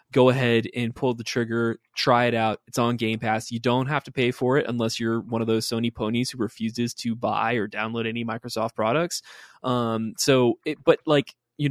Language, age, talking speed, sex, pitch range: English, 20-39, 215 wpm, male, 110-130 Hz